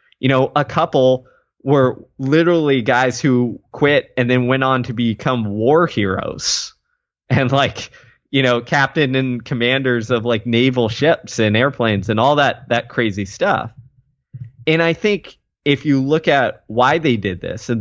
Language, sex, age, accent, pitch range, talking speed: English, male, 20-39, American, 115-145 Hz, 160 wpm